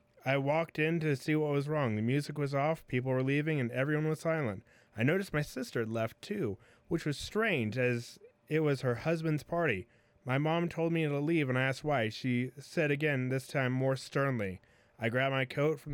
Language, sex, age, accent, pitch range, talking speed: English, male, 30-49, American, 120-150 Hz, 215 wpm